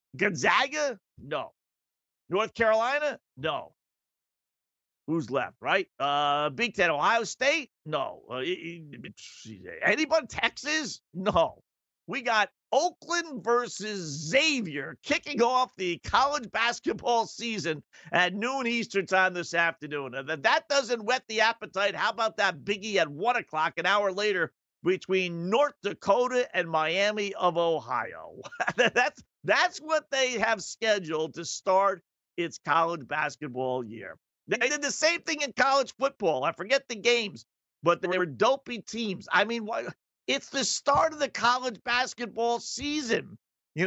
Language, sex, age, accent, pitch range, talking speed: English, male, 50-69, American, 175-245 Hz, 135 wpm